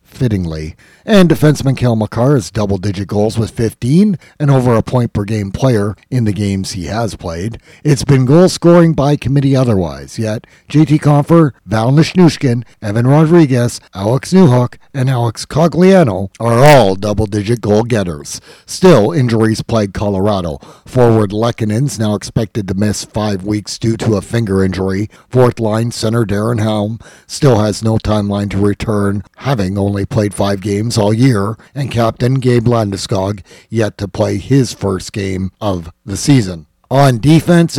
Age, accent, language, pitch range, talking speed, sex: 50-69, American, English, 100-130 Hz, 145 wpm, male